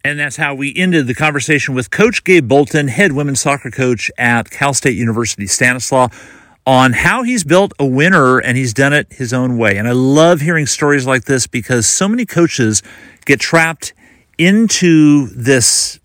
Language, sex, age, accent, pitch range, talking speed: English, male, 50-69, American, 115-145 Hz, 180 wpm